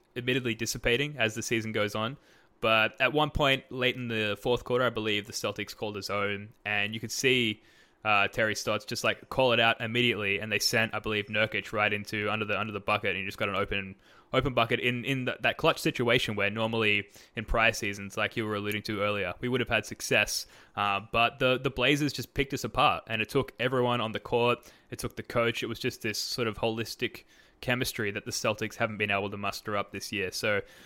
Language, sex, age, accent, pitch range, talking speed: English, male, 10-29, Australian, 105-125 Hz, 230 wpm